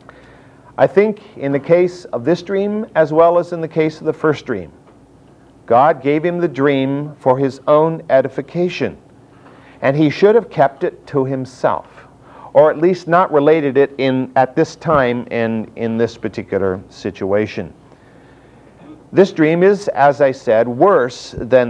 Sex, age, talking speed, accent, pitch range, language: male, 50-69, 160 wpm, American, 135-195 Hz, English